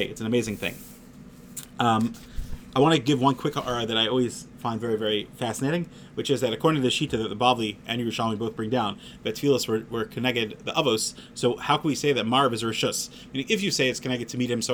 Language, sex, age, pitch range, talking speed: English, male, 30-49, 115-145 Hz, 250 wpm